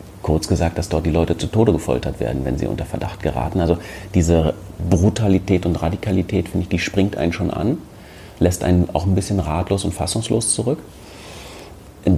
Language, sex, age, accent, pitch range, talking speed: German, male, 30-49, German, 85-100 Hz, 180 wpm